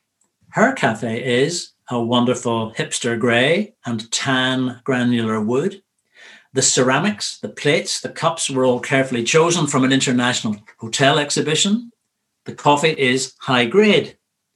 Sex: male